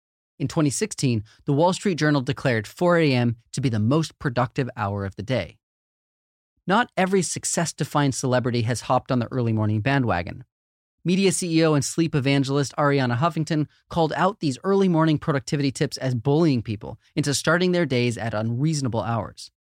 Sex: male